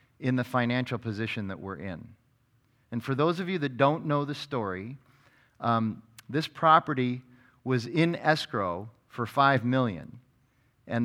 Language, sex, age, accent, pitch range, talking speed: English, male, 40-59, American, 110-135 Hz, 145 wpm